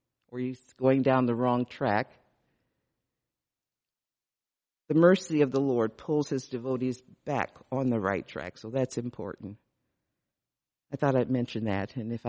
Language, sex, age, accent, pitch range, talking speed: English, female, 60-79, American, 125-155 Hz, 145 wpm